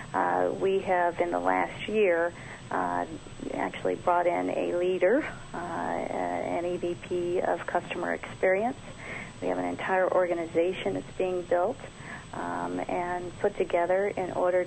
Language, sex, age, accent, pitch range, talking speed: English, female, 40-59, American, 160-185 Hz, 135 wpm